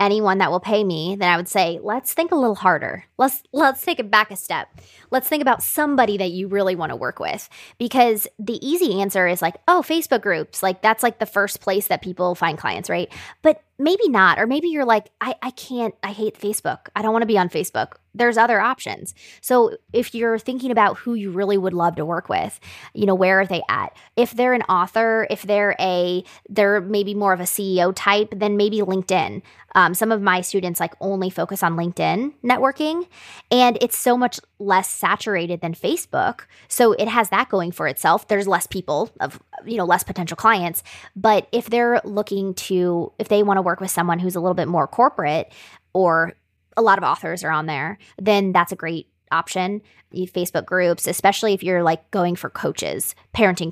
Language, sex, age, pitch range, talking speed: English, female, 20-39, 180-225 Hz, 210 wpm